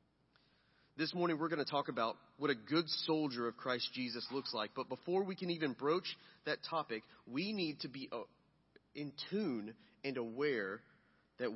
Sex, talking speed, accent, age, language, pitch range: male, 170 wpm, American, 30-49, English, 135-170 Hz